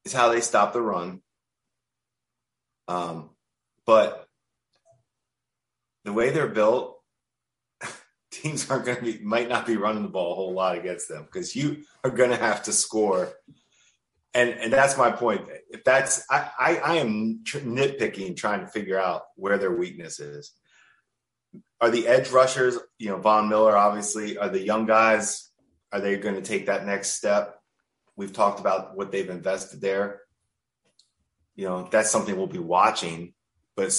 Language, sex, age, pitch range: English, male, 30-49, 95-115 Hz